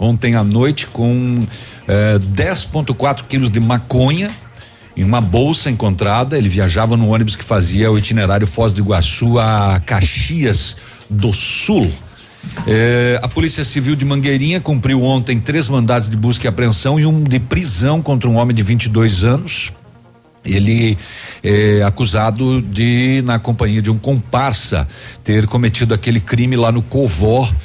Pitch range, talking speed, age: 105-120 Hz, 150 wpm, 60-79